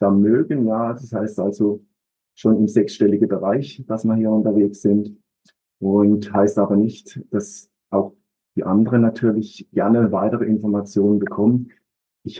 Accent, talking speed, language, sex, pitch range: German, 140 wpm, German, male, 105-120 Hz